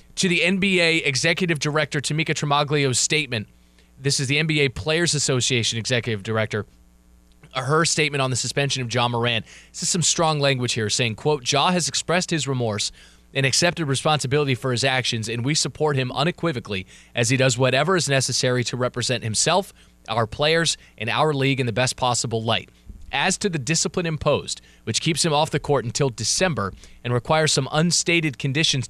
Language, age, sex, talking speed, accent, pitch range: English, 20-39, male, 175 wpm, American, 115-160 Hz